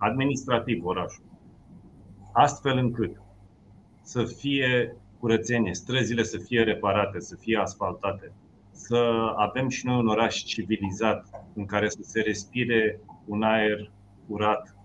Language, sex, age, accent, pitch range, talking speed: Romanian, male, 40-59, native, 105-120 Hz, 115 wpm